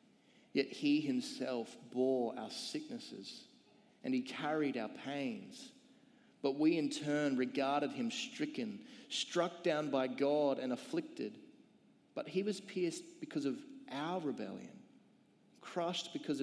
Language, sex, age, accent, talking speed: English, male, 30-49, Australian, 125 wpm